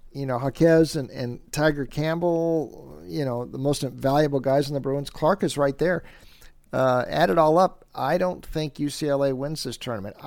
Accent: American